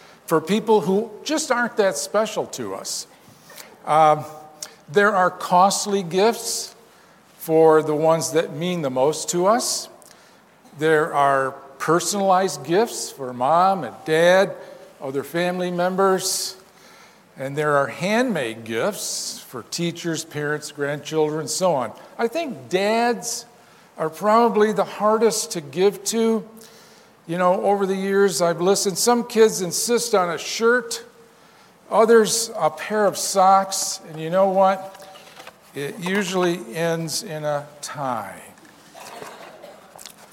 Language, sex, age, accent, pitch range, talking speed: English, male, 50-69, American, 160-215 Hz, 125 wpm